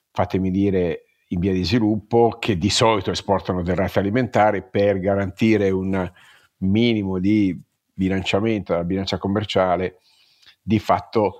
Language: Italian